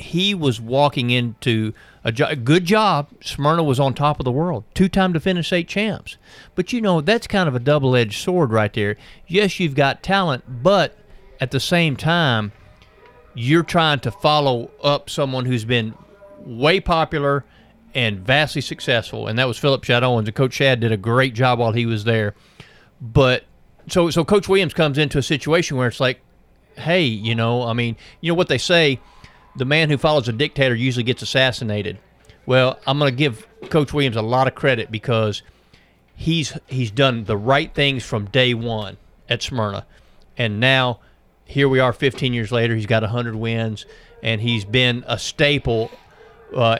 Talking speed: 180 wpm